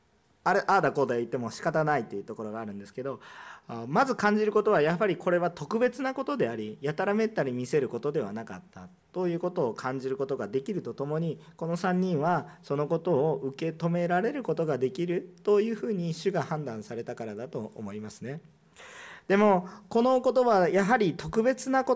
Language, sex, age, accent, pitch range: Japanese, male, 40-59, native, 125-185 Hz